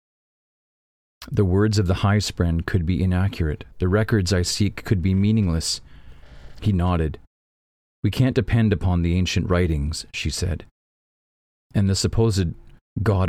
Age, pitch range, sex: 40-59, 85-115 Hz, male